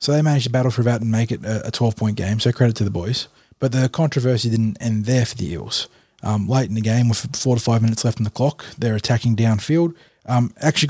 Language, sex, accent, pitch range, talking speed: English, male, Australian, 110-130 Hz, 255 wpm